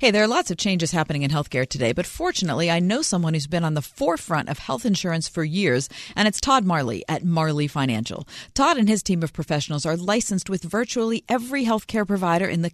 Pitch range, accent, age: 155-220 Hz, American, 40-59